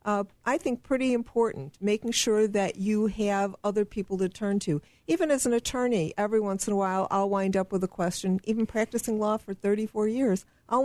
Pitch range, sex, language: 170-210 Hz, female, English